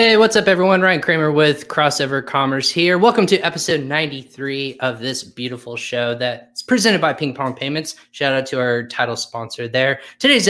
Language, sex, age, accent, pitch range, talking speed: English, male, 20-39, American, 115-140 Hz, 185 wpm